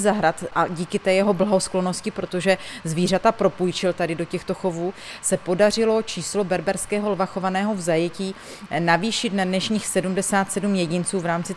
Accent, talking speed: native, 140 wpm